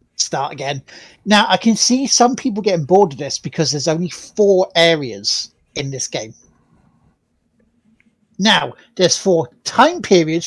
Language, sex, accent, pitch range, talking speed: English, male, British, 150-190 Hz, 145 wpm